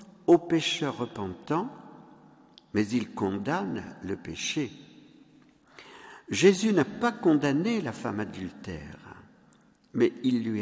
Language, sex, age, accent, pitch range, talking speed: French, male, 50-69, French, 115-185 Hz, 100 wpm